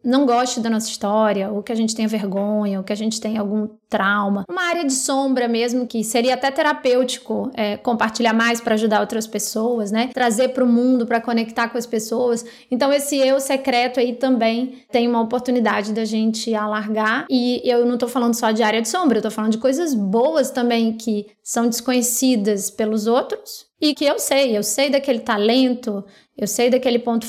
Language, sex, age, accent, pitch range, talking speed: Portuguese, female, 20-39, Brazilian, 220-260 Hz, 200 wpm